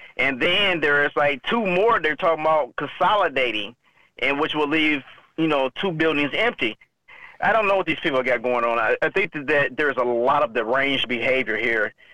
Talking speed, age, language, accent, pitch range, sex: 195 wpm, 30-49, English, American, 130-165 Hz, male